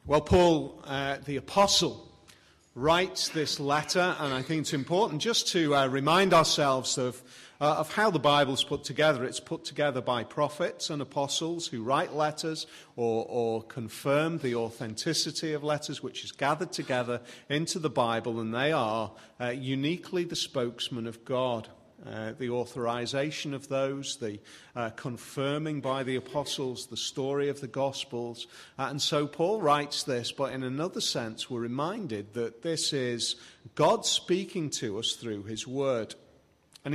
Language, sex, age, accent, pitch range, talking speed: English, male, 40-59, British, 125-155 Hz, 160 wpm